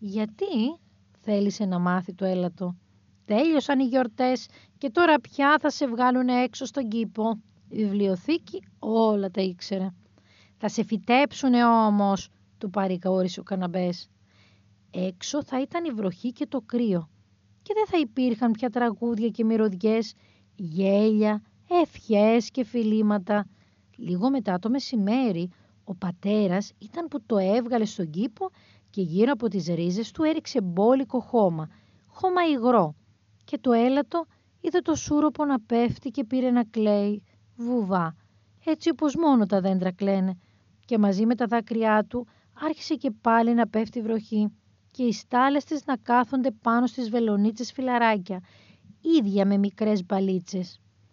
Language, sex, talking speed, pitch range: Greek, female, 140 wpm, 190-255 Hz